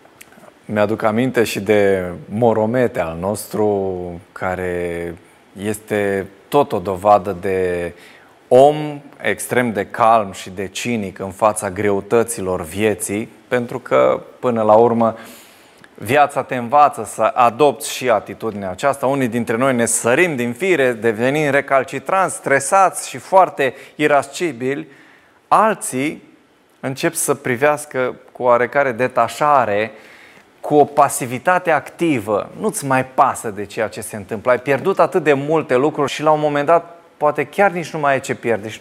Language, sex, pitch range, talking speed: Romanian, male, 105-150 Hz, 140 wpm